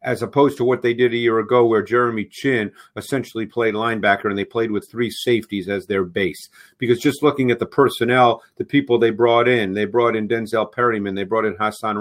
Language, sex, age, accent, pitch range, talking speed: English, male, 50-69, American, 110-125 Hz, 220 wpm